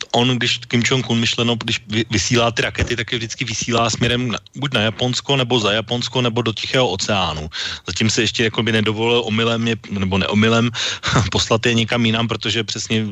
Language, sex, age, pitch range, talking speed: Slovak, male, 30-49, 105-120 Hz, 175 wpm